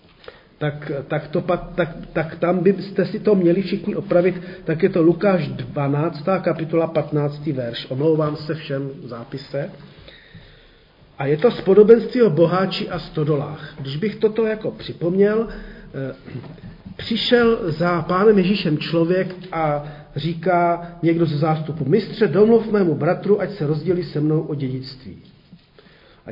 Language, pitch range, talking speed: Czech, 150-185 Hz, 140 wpm